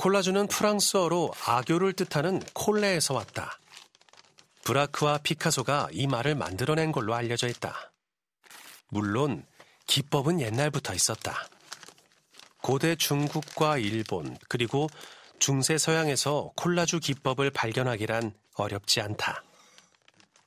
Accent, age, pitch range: native, 40-59, 130-170 Hz